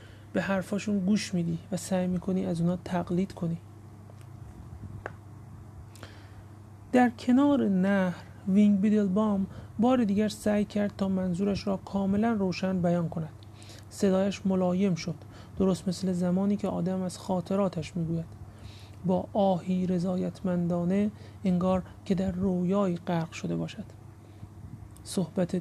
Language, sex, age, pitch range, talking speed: Persian, male, 30-49, 165-200 Hz, 115 wpm